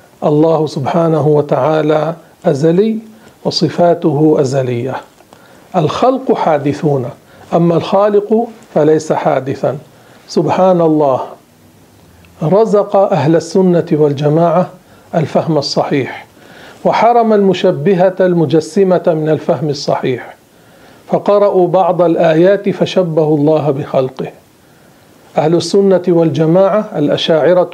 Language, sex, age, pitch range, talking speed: Arabic, male, 50-69, 155-190 Hz, 80 wpm